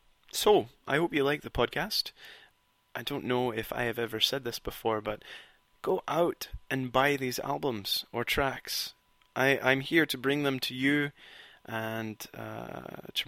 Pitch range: 110-130 Hz